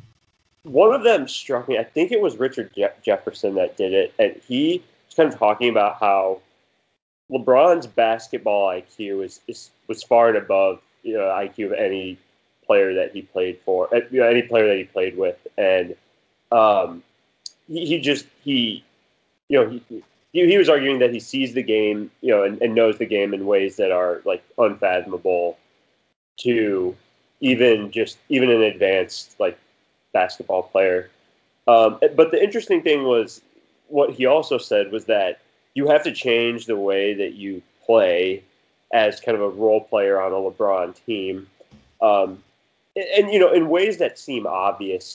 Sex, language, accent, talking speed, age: male, English, American, 170 wpm, 20-39